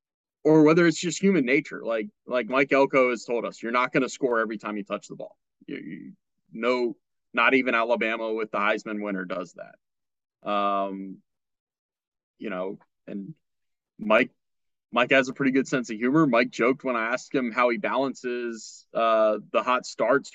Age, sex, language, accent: 20-39, male, English, American